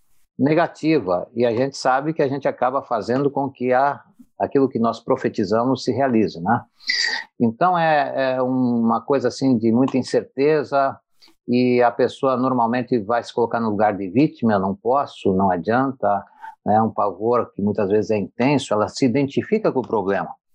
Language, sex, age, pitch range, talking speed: Portuguese, male, 50-69, 115-160 Hz, 170 wpm